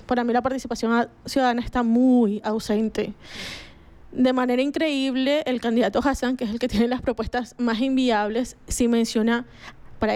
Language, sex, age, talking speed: Spanish, female, 20-39, 160 wpm